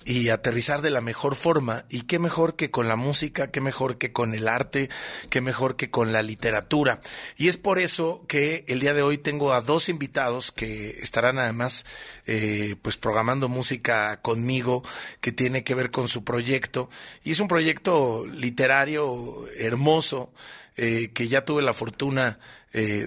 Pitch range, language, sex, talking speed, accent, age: 115-145 Hz, Spanish, male, 170 wpm, Mexican, 30-49